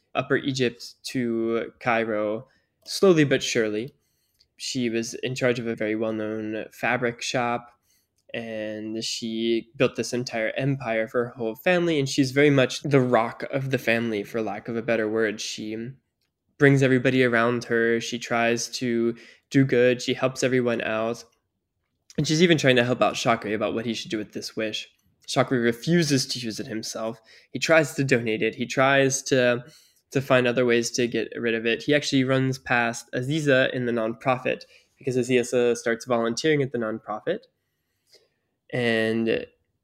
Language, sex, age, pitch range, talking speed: English, male, 10-29, 115-130 Hz, 165 wpm